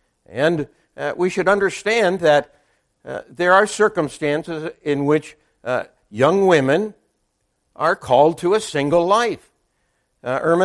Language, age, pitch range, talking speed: English, 60-79, 150-205 Hz, 130 wpm